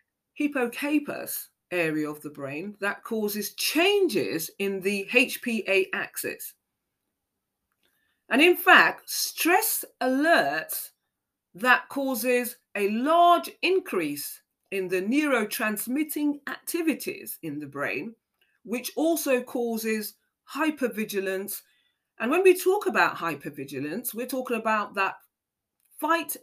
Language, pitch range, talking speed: English, 170-285 Hz, 100 wpm